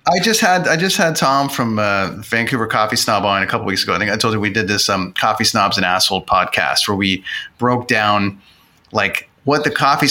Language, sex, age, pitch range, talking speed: English, male, 30-49, 110-135 Hz, 230 wpm